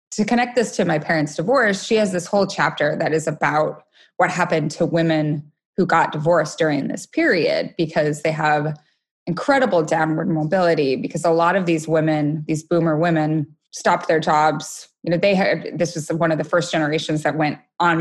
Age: 20-39